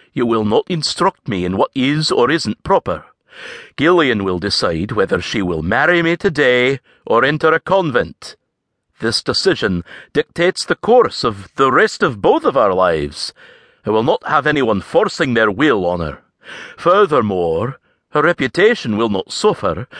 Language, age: English, 60-79